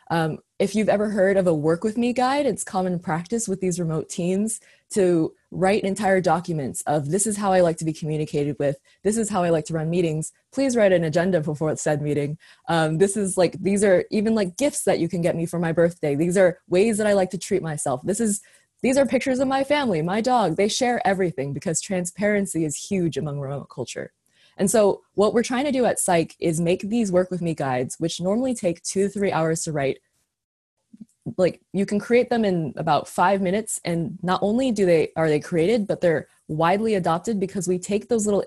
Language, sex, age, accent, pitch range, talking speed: English, female, 20-39, American, 165-210 Hz, 225 wpm